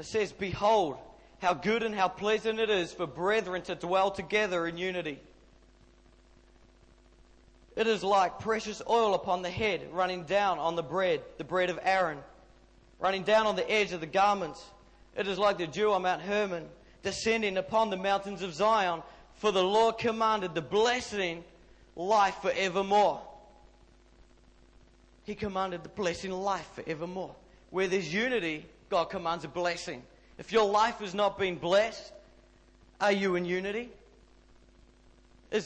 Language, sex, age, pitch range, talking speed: English, male, 40-59, 180-225 Hz, 150 wpm